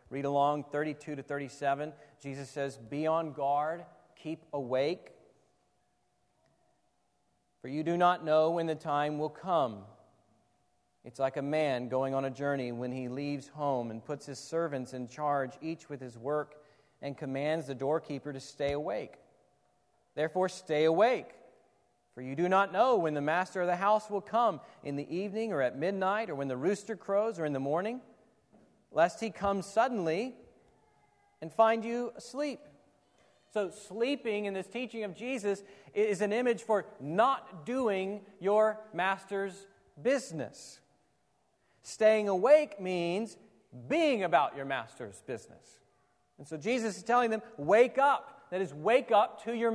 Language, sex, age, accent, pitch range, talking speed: English, male, 40-59, American, 145-210 Hz, 155 wpm